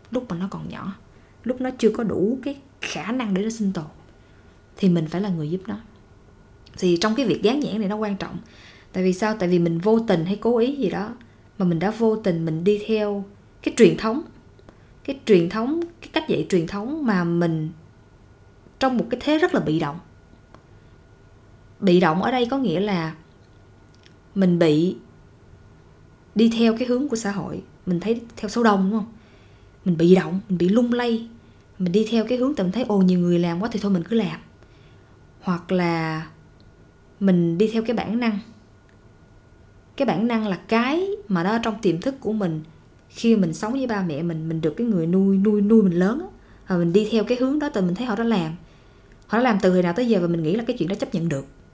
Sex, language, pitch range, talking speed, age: female, Vietnamese, 160-225 Hz, 220 wpm, 20-39